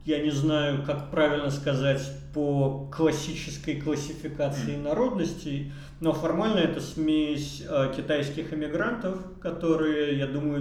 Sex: male